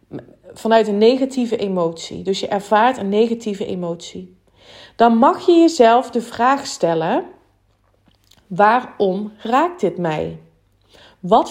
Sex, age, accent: female, 30-49, Dutch